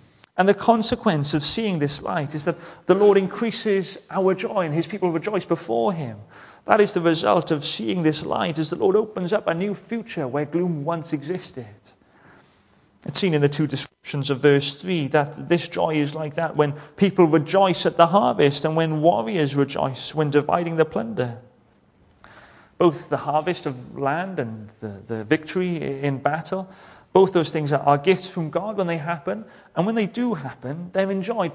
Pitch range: 145-195 Hz